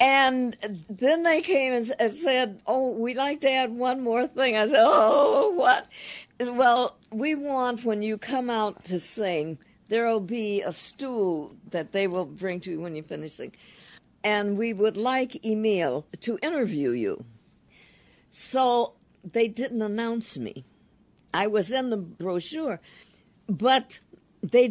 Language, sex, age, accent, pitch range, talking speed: English, female, 60-79, American, 190-255 Hz, 150 wpm